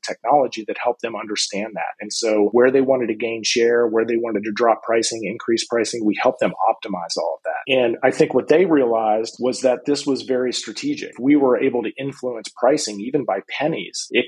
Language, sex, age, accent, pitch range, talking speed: English, male, 40-59, American, 110-130 Hz, 215 wpm